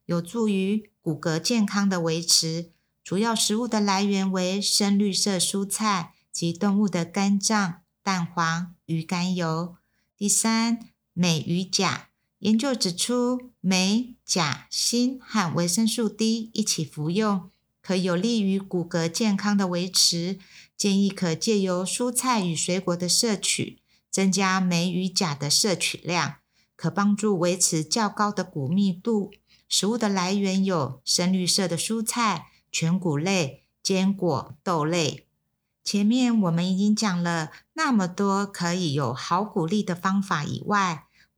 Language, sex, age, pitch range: Chinese, female, 50-69, 170-210 Hz